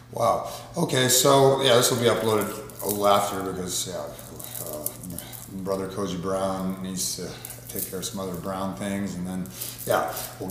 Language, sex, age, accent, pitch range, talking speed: English, male, 40-59, American, 100-120 Hz, 170 wpm